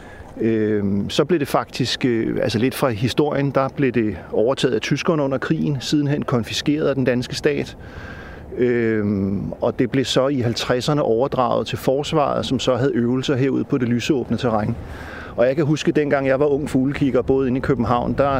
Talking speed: 175 wpm